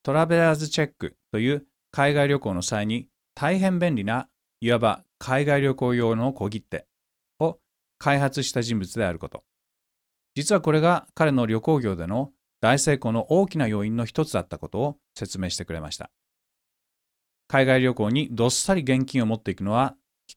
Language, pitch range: Japanese, 110-145 Hz